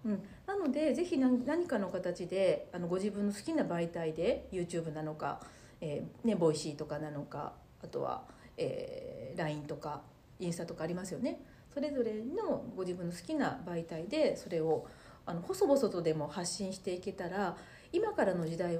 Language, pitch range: Japanese, 170-275 Hz